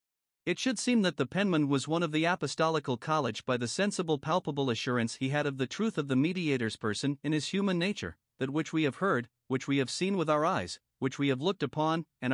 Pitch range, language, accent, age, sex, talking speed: 130-170 Hz, English, American, 50-69, male, 235 wpm